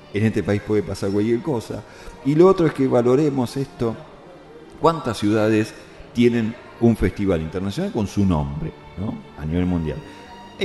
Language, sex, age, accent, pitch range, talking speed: Spanish, male, 40-59, Argentinian, 85-105 Hz, 160 wpm